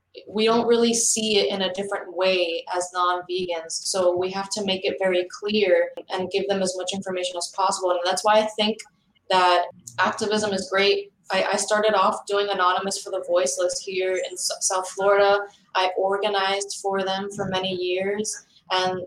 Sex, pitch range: female, 185-210 Hz